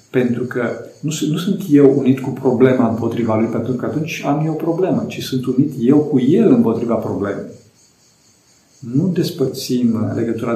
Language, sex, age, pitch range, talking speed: Romanian, male, 50-69, 120-155 Hz, 160 wpm